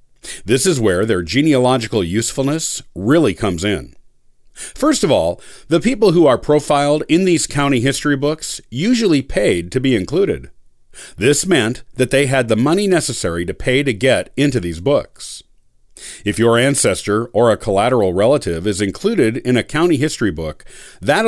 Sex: male